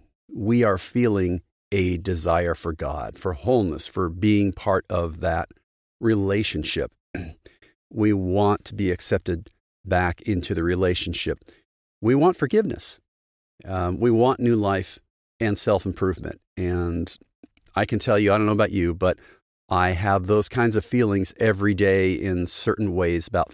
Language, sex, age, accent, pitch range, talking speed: English, male, 50-69, American, 90-105 Hz, 145 wpm